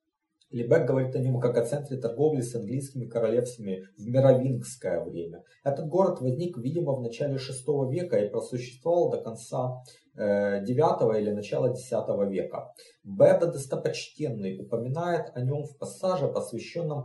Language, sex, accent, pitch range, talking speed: Russian, male, native, 115-155 Hz, 140 wpm